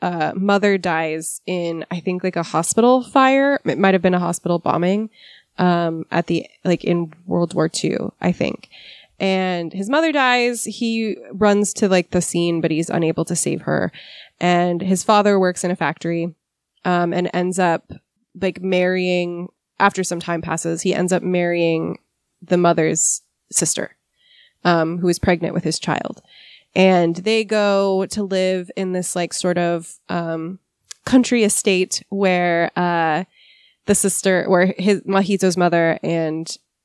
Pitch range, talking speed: 170-200 Hz, 155 wpm